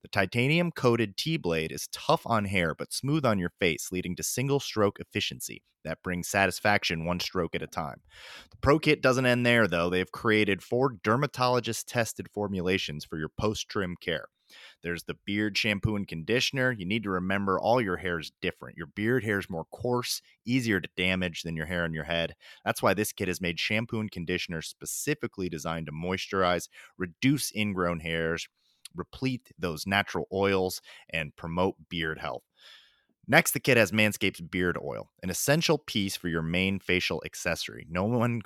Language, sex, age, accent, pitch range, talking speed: English, male, 30-49, American, 85-110 Hz, 175 wpm